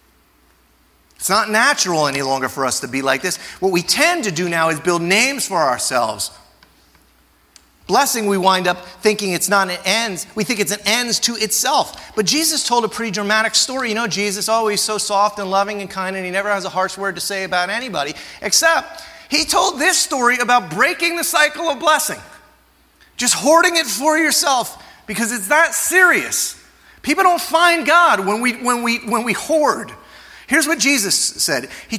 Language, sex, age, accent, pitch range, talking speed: English, male, 30-49, American, 205-320 Hz, 195 wpm